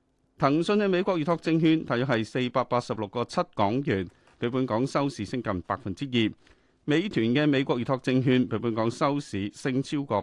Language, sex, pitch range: Chinese, male, 110-155 Hz